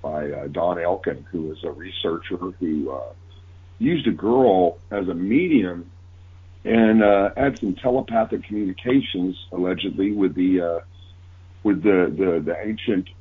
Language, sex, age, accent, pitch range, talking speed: English, male, 50-69, American, 90-110 Hz, 140 wpm